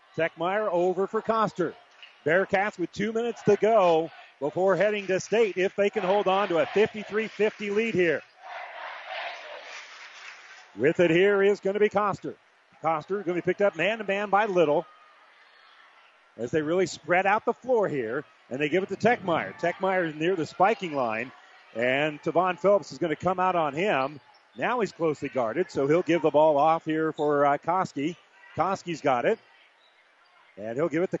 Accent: American